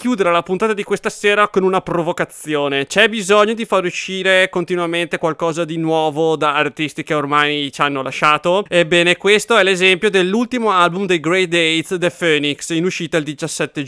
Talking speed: 175 wpm